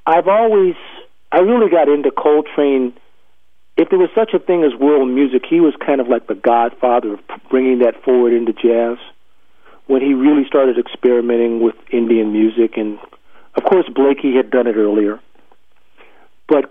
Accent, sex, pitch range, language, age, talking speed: American, male, 125-155 Hz, English, 50-69, 165 wpm